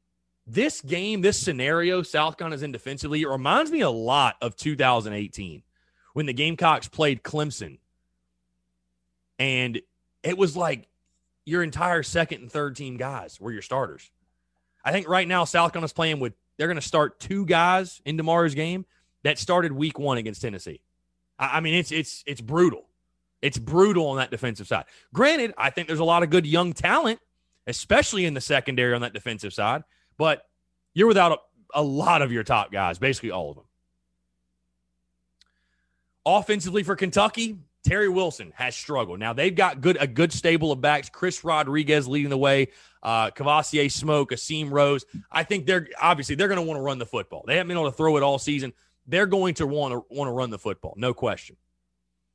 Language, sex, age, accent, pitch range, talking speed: English, male, 30-49, American, 105-170 Hz, 180 wpm